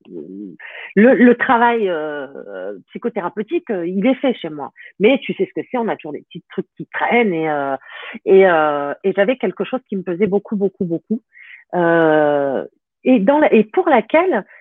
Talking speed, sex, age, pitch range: 185 wpm, female, 40-59, 185-285 Hz